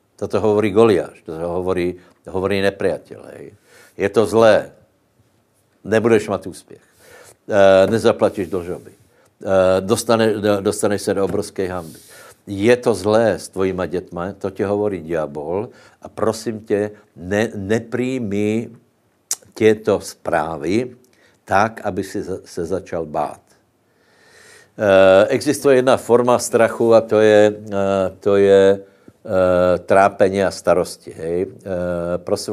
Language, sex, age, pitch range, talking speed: Slovak, male, 60-79, 90-105 Hz, 115 wpm